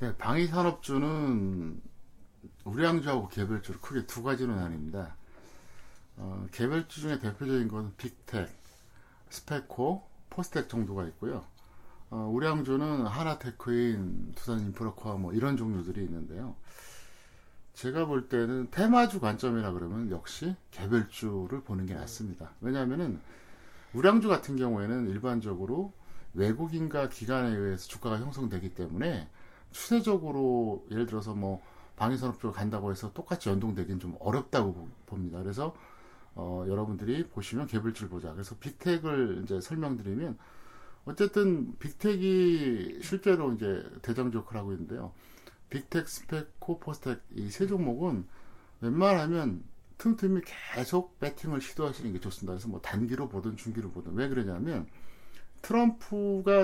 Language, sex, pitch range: Korean, male, 100-145 Hz